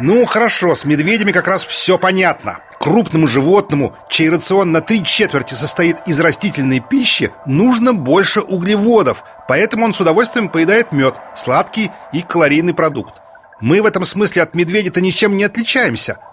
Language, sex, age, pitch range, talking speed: Russian, male, 40-59, 160-220 Hz, 150 wpm